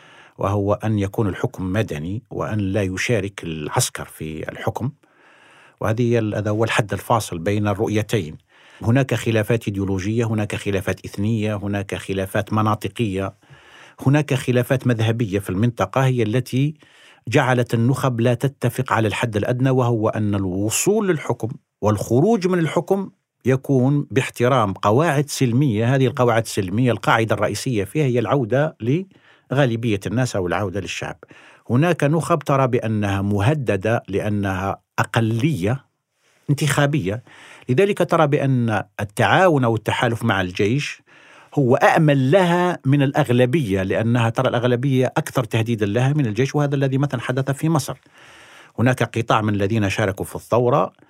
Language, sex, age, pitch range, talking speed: Arabic, male, 50-69, 105-135 Hz, 125 wpm